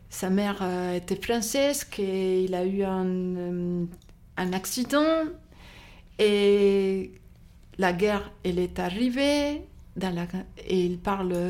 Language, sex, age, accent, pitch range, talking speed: French, female, 60-79, French, 185-220 Hz, 115 wpm